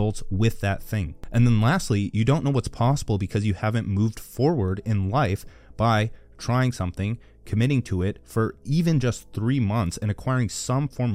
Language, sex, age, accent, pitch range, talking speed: English, male, 30-49, American, 95-115 Hz, 180 wpm